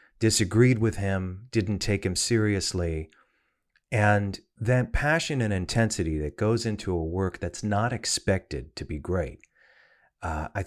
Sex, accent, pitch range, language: male, American, 85-115 Hz, English